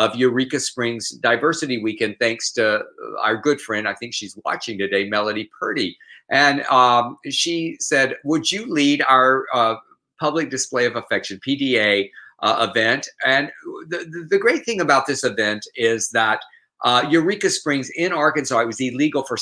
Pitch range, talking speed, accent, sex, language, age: 115-170 Hz, 160 wpm, American, male, English, 50-69